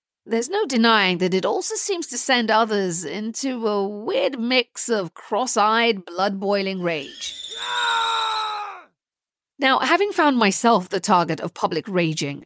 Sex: female